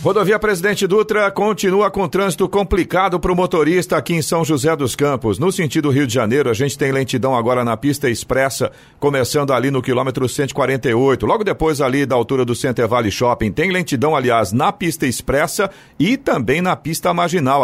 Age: 50-69